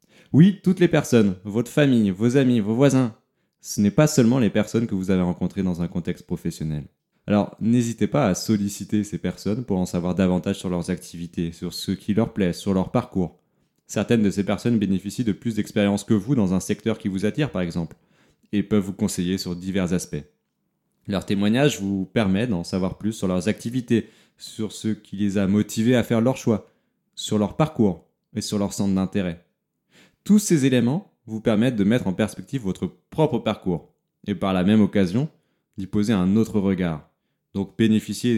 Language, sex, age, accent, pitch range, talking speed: French, male, 20-39, French, 95-120 Hz, 190 wpm